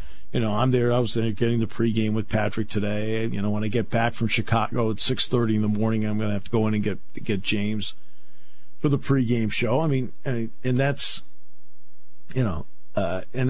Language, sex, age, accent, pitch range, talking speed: English, male, 50-69, American, 100-125 Hz, 230 wpm